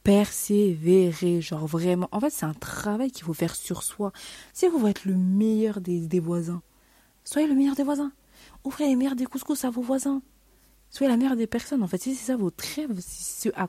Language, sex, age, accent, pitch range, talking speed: French, female, 30-49, French, 180-255 Hz, 225 wpm